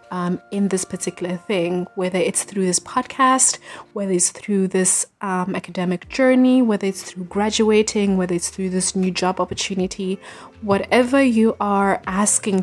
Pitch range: 180-205 Hz